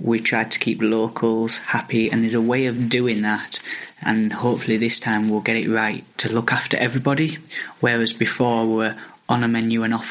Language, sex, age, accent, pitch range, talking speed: English, male, 20-39, British, 110-120 Hz, 200 wpm